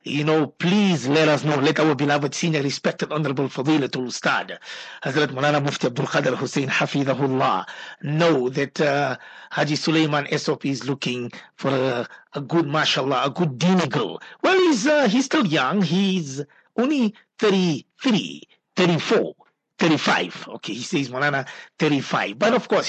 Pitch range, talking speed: 145-200 Hz, 145 wpm